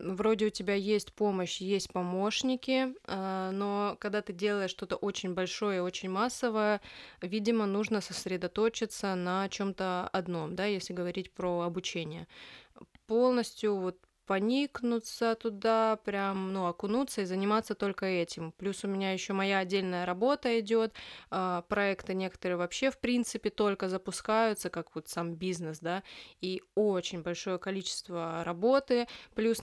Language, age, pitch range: Russian, 20-39, 185-225 Hz